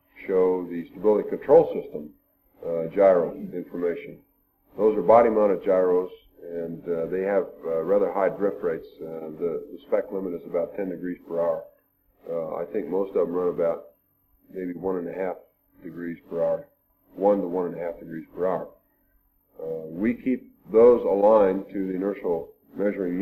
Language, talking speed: English, 175 wpm